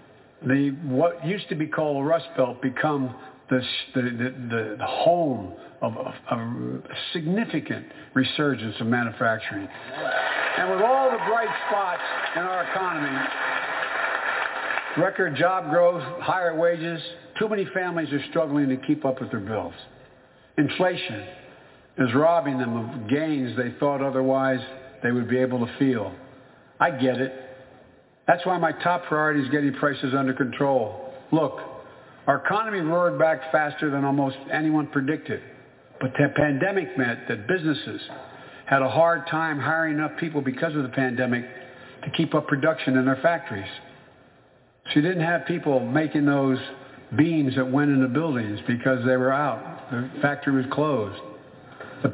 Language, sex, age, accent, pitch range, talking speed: English, male, 60-79, American, 130-160 Hz, 150 wpm